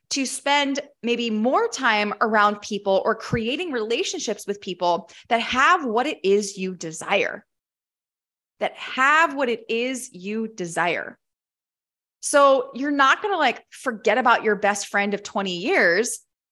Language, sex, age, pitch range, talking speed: English, female, 20-39, 200-250 Hz, 145 wpm